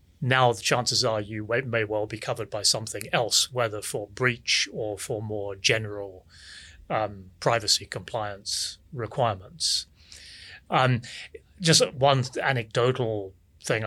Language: English